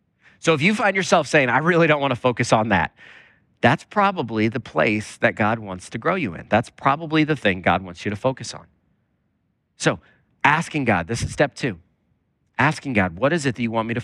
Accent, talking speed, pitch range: American, 220 wpm, 120-160 Hz